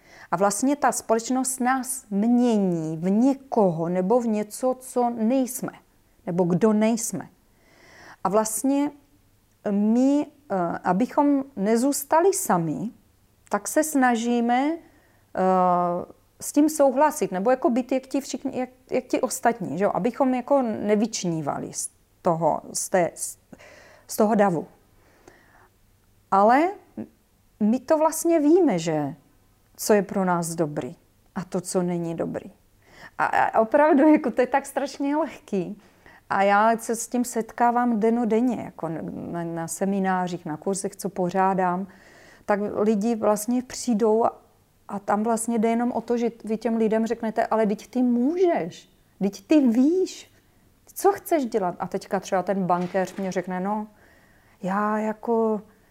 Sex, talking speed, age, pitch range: female, 130 wpm, 30-49, 190-255 Hz